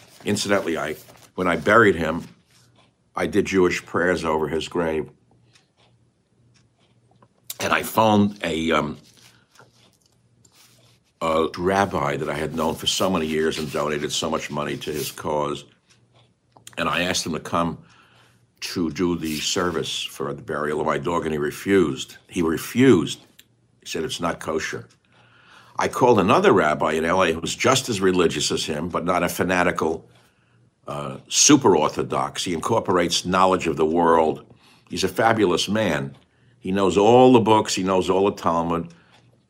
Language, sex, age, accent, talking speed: English, male, 60-79, American, 150 wpm